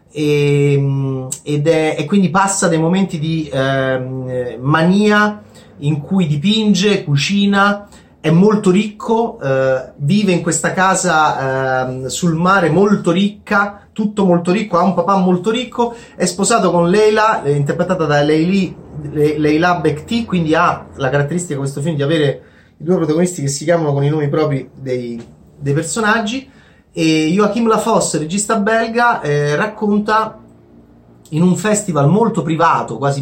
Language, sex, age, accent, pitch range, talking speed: Italian, male, 30-49, native, 135-190 Hz, 150 wpm